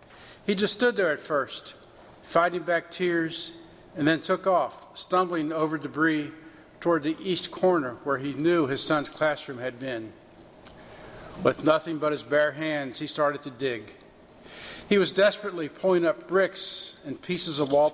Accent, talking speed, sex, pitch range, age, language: American, 160 wpm, male, 145-180 Hz, 50-69, English